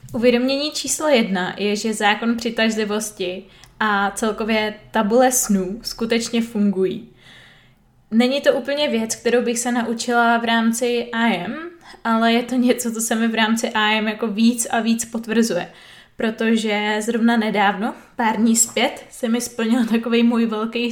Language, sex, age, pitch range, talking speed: Czech, female, 20-39, 220-240 Hz, 145 wpm